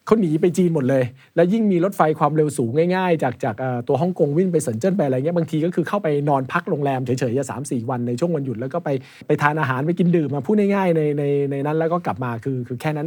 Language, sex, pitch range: Thai, male, 130-170 Hz